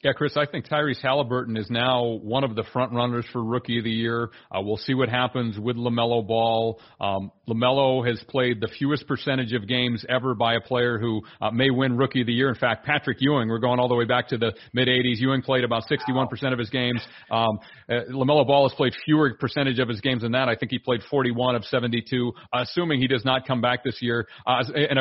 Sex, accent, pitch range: male, American, 120-140 Hz